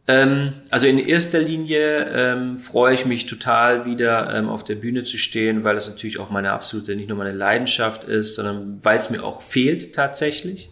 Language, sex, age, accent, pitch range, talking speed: German, male, 30-49, German, 115-130 Hz, 190 wpm